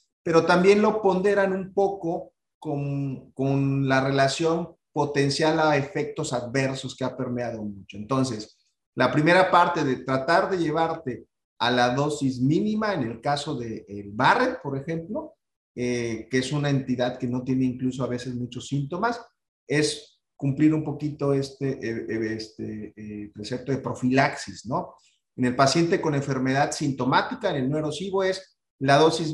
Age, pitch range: 40-59, 130-165 Hz